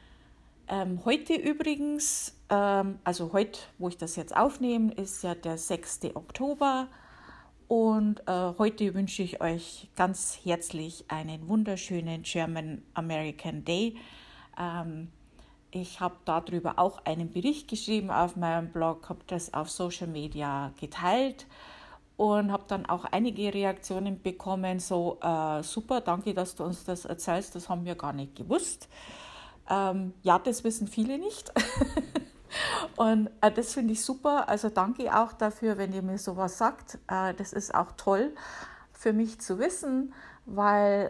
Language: German